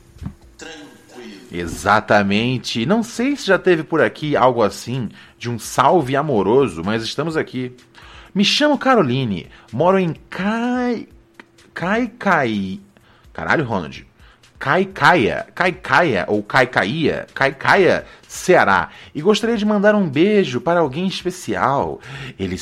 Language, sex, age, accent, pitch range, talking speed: Portuguese, male, 30-49, Brazilian, 105-165 Hz, 110 wpm